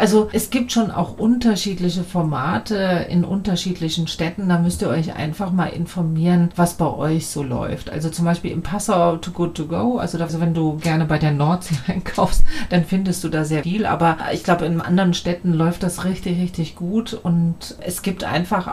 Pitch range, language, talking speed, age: 165-195 Hz, German, 195 wpm, 40-59